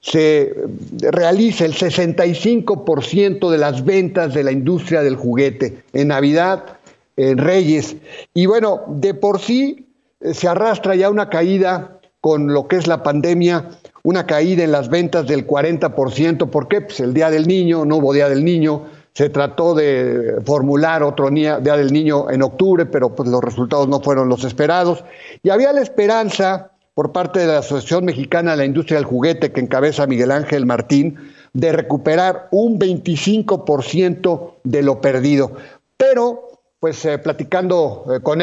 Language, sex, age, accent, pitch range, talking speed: Spanish, male, 50-69, Mexican, 145-185 Hz, 160 wpm